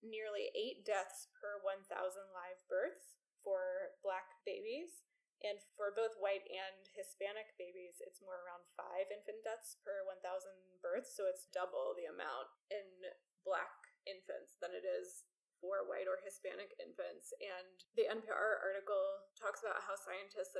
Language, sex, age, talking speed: English, female, 20-39, 145 wpm